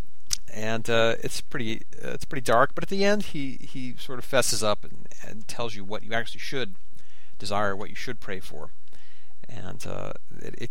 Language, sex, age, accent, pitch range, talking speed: English, male, 40-59, American, 100-125 Hz, 200 wpm